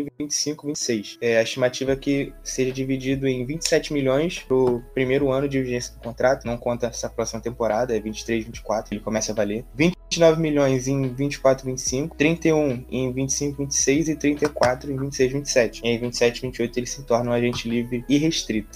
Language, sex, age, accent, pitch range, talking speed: Portuguese, male, 10-29, Brazilian, 125-150 Hz, 180 wpm